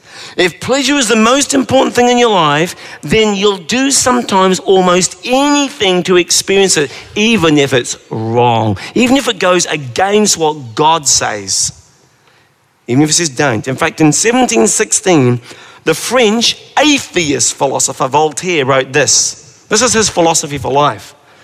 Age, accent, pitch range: 50-69, British, 140-215 Hz